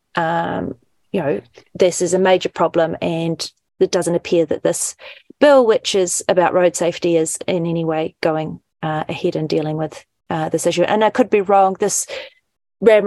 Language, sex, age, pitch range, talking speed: English, female, 30-49, 175-205 Hz, 185 wpm